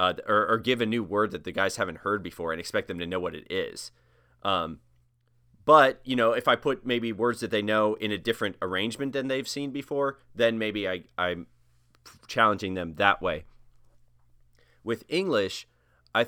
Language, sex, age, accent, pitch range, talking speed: English, male, 30-49, American, 90-115 Hz, 190 wpm